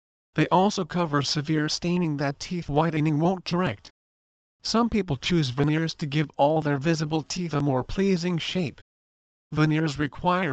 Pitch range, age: 140-165 Hz, 40-59